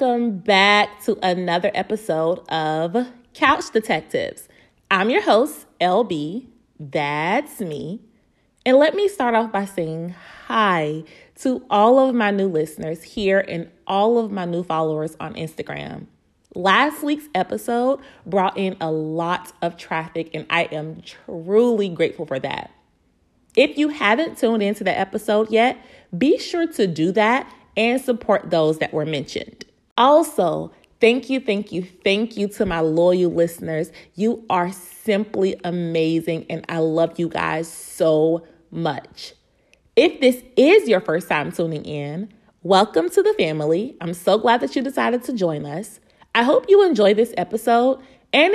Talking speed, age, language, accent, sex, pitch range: 150 wpm, 30-49, English, American, female, 165-240 Hz